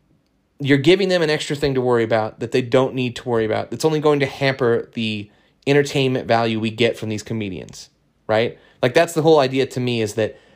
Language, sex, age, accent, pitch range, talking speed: English, male, 30-49, American, 115-145 Hz, 220 wpm